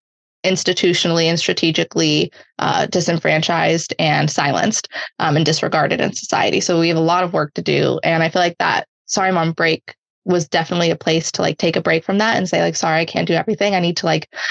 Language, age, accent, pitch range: English, 20-39, American, 160-185 Hz